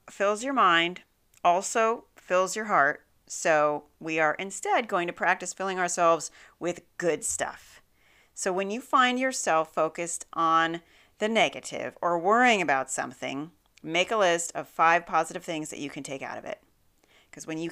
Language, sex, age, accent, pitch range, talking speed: English, female, 40-59, American, 165-245 Hz, 165 wpm